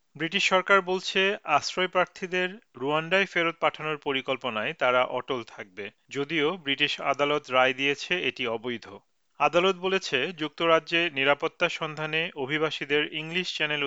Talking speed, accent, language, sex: 85 wpm, native, Bengali, male